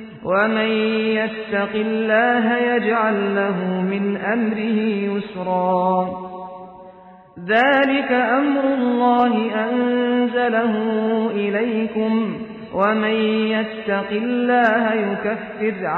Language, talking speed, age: Filipino, 65 wpm, 40-59